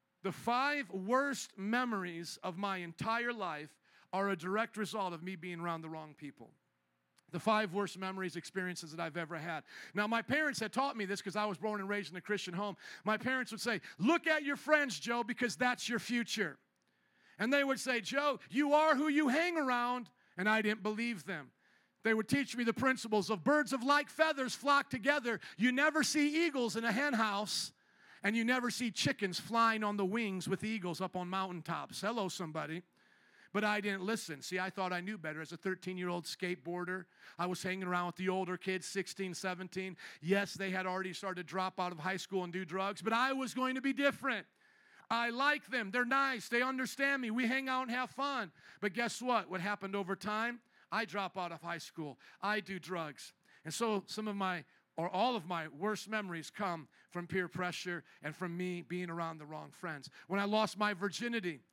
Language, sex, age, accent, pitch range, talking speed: English, male, 50-69, American, 180-235 Hz, 210 wpm